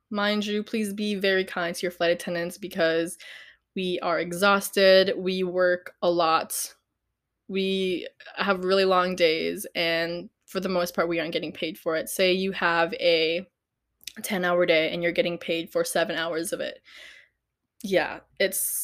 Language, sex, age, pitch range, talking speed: English, female, 20-39, 175-200 Hz, 165 wpm